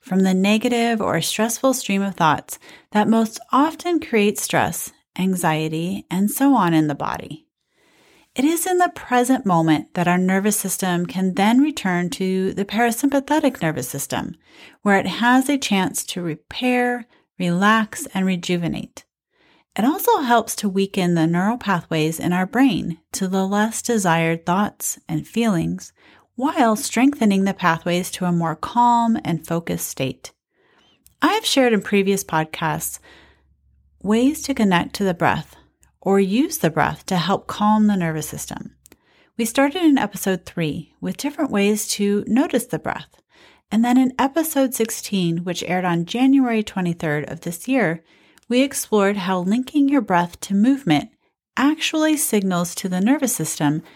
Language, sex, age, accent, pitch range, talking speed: English, female, 30-49, American, 175-245 Hz, 155 wpm